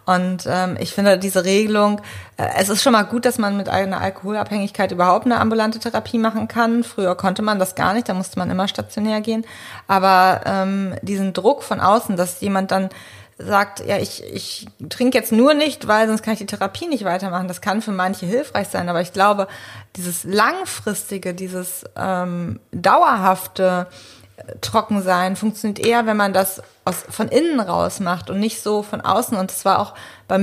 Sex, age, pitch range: female, 20-39, 185-220 Hz